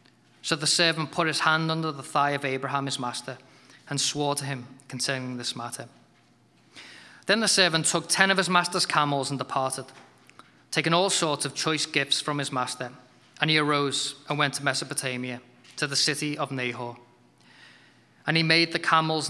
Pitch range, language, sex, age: 130-160 Hz, English, male, 20-39